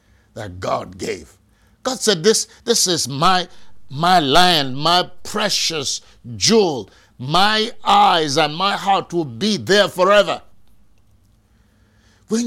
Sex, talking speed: male, 115 wpm